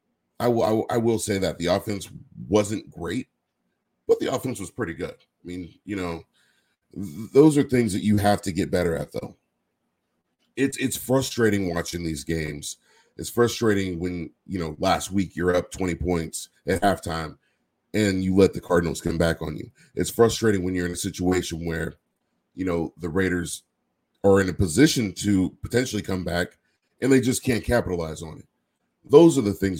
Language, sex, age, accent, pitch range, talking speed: English, male, 30-49, American, 85-105 Hz, 180 wpm